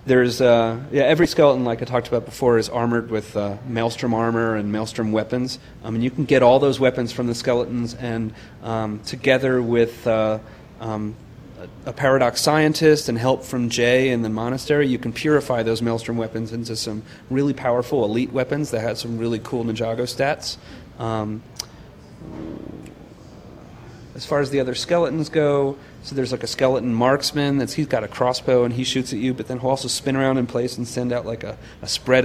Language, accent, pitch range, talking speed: English, American, 115-130 Hz, 195 wpm